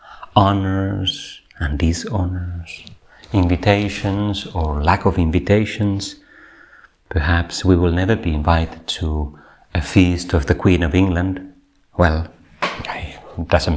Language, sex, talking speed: Finnish, male, 110 wpm